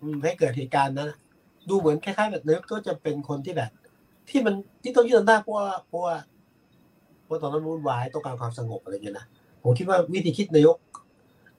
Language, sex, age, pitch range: Thai, male, 60-79, 130-175 Hz